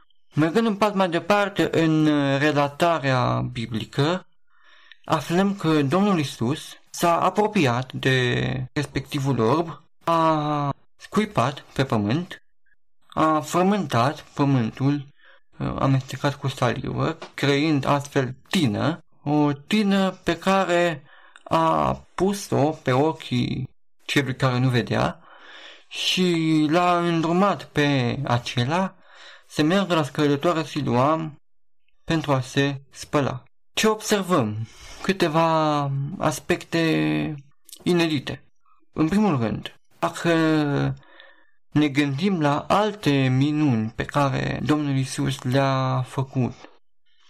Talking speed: 95 wpm